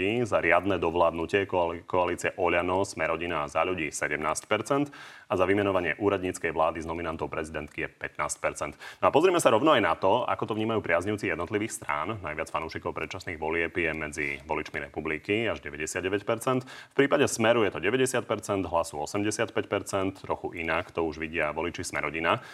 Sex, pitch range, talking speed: male, 80-110 Hz, 155 wpm